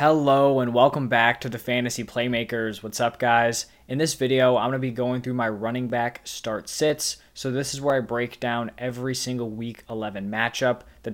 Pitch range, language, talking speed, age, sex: 115-140 Hz, English, 200 wpm, 20-39, male